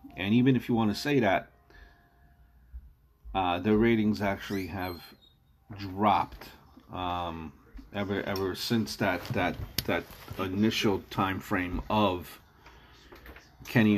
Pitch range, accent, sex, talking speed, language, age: 75-110 Hz, American, male, 110 wpm, English, 40-59